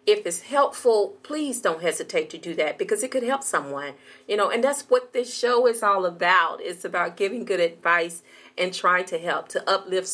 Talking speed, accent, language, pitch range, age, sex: 205 wpm, American, English, 175-290 Hz, 40-59, female